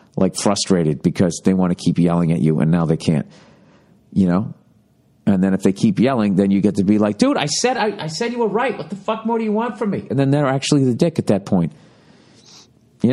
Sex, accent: male, American